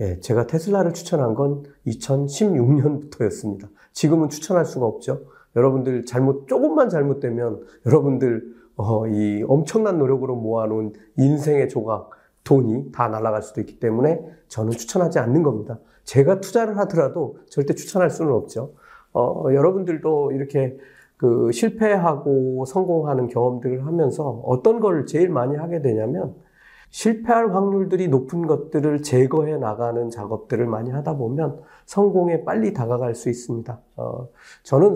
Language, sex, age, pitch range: Korean, male, 40-59, 120-160 Hz